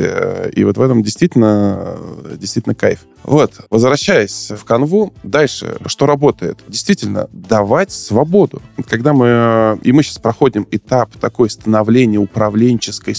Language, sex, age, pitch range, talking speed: Russian, male, 20-39, 105-130 Hz, 125 wpm